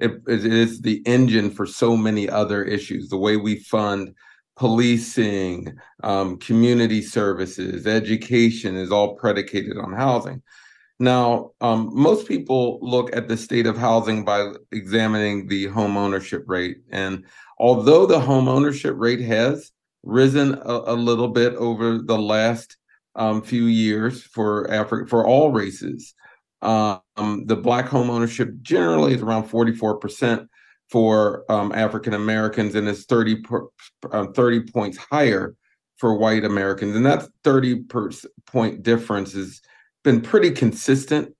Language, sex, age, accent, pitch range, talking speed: English, male, 40-59, American, 105-120 Hz, 135 wpm